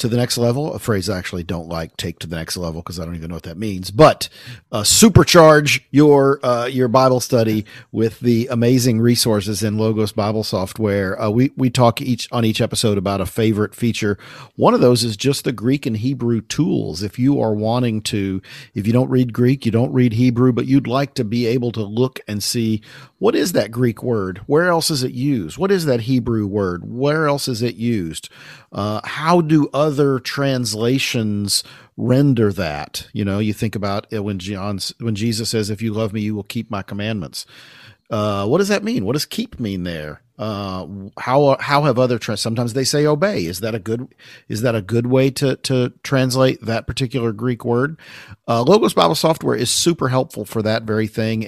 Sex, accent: male, American